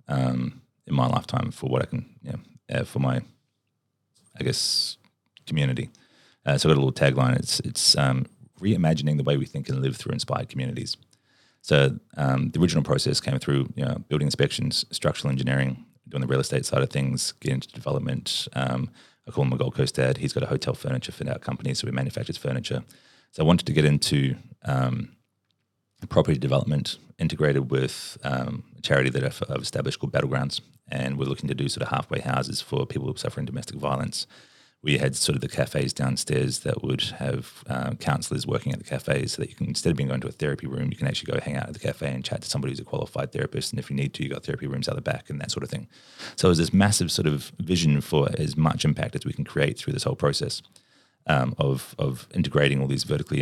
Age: 30-49